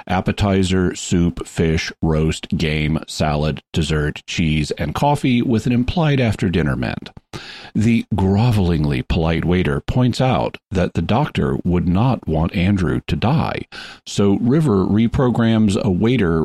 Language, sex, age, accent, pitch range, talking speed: English, male, 50-69, American, 85-115 Hz, 130 wpm